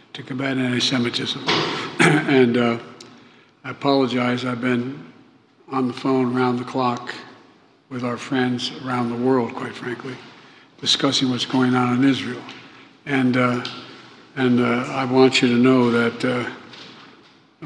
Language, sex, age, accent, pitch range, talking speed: English, male, 60-79, American, 125-135 Hz, 135 wpm